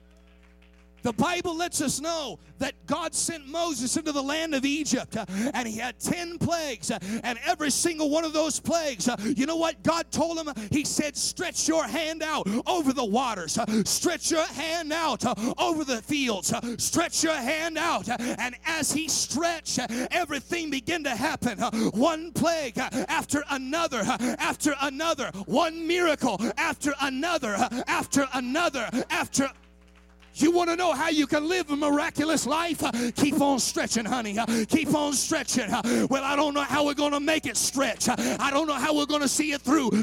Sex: male